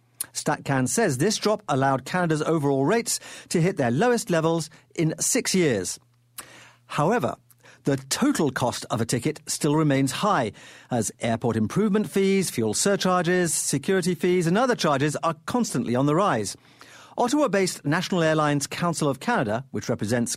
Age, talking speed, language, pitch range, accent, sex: 50-69, 145 wpm, English, 125-180 Hz, British, male